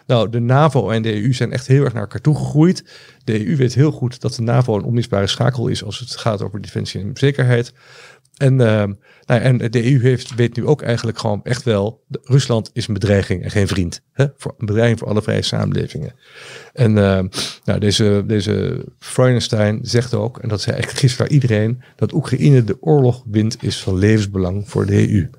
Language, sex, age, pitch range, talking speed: Dutch, male, 50-69, 105-130 Hz, 200 wpm